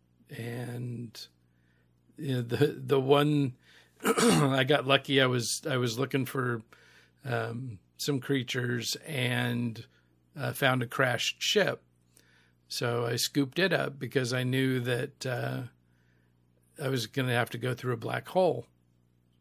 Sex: male